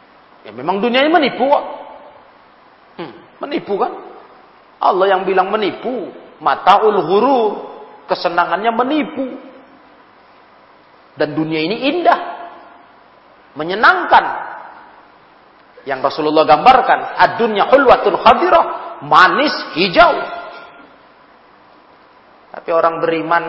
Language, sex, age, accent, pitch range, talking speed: Indonesian, male, 40-59, native, 150-190 Hz, 80 wpm